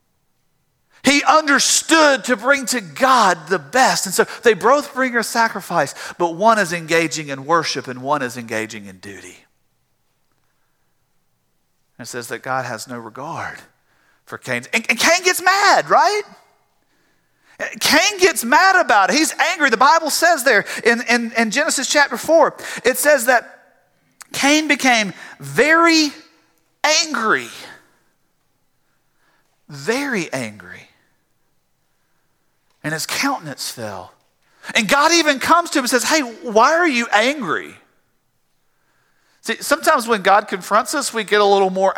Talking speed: 135 wpm